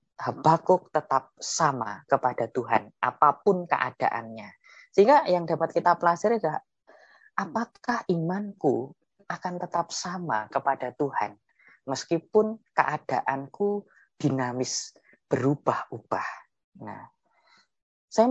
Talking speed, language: 85 wpm, Indonesian